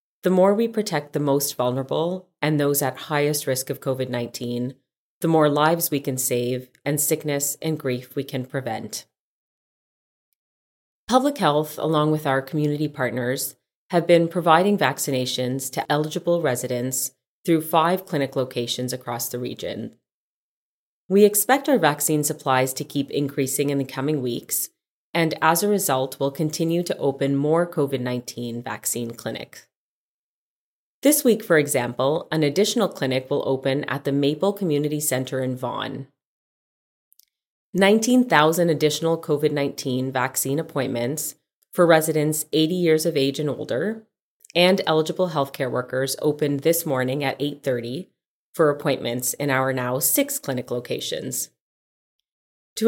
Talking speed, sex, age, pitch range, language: 135 wpm, female, 30-49, 130-160 Hz, English